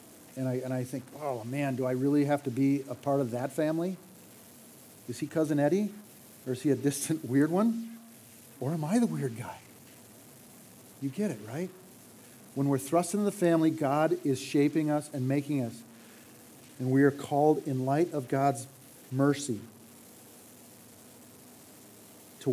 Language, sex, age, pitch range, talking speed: English, male, 40-59, 125-155 Hz, 165 wpm